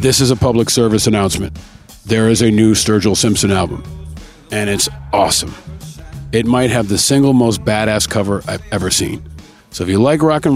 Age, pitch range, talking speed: 40-59, 100-130 Hz, 190 wpm